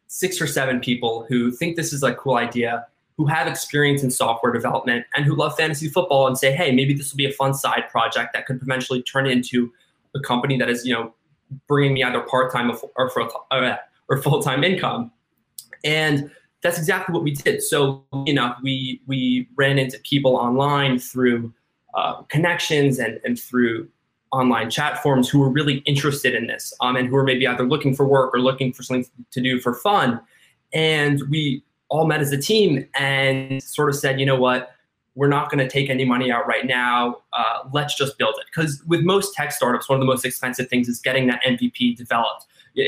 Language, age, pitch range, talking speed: English, 20-39, 125-145 Hz, 205 wpm